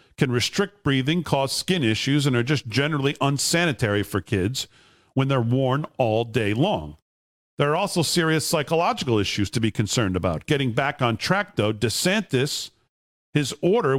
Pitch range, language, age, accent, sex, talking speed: 120-150 Hz, English, 50-69, American, male, 160 wpm